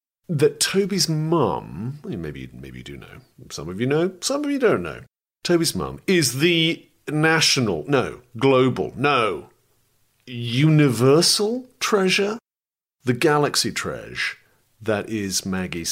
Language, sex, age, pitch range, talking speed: English, male, 40-59, 100-155 Hz, 125 wpm